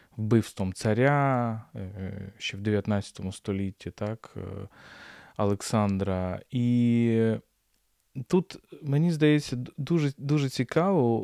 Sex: male